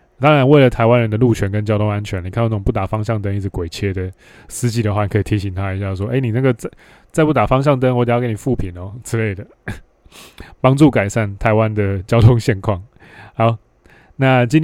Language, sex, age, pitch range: Chinese, male, 20-39, 105-125 Hz